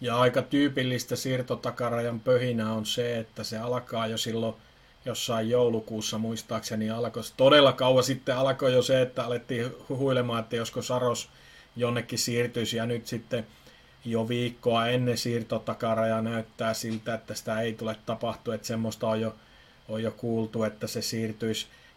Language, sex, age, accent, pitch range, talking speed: Finnish, male, 30-49, native, 115-125 Hz, 150 wpm